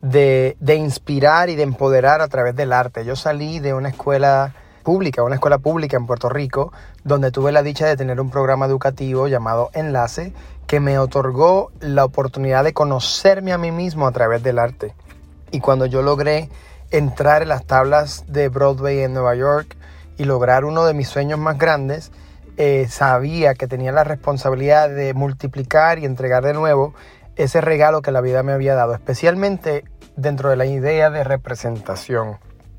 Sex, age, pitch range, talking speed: male, 30-49, 130-150 Hz, 175 wpm